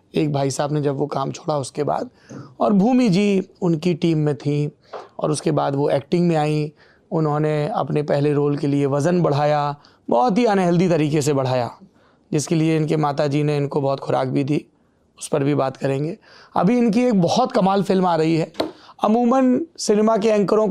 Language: Hindi